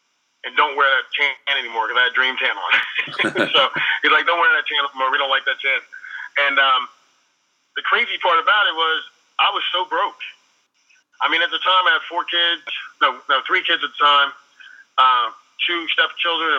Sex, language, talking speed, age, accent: male, English, 205 wpm, 30-49, American